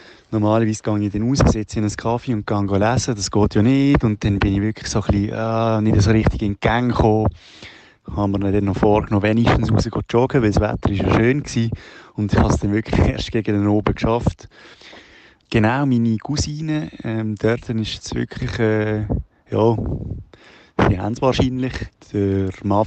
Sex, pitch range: male, 100-120 Hz